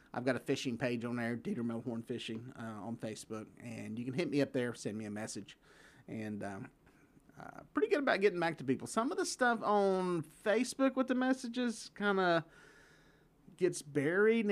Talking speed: 195 wpm